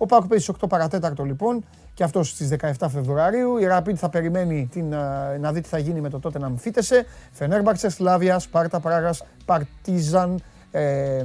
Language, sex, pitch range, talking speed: Greek, male, 140-185 Hz, 175 wpm